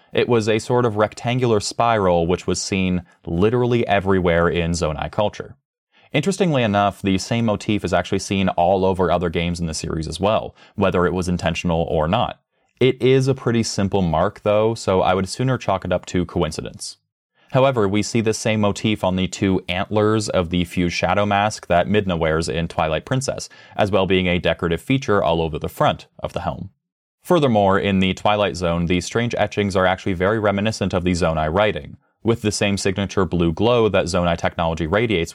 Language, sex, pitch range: English, male, 90-115 Hz